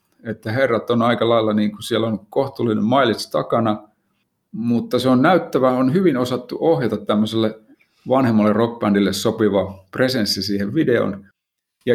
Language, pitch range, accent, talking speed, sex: Finnish, 105-125 Hz, native, 135 wpm, male